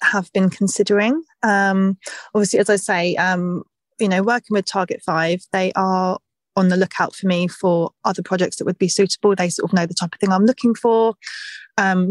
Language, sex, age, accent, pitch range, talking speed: English, female, 20-39, British, 175-210 Hz, 205 wpm